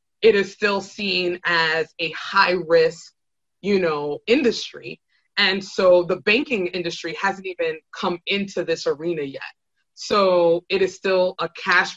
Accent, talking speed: American, 145 wpm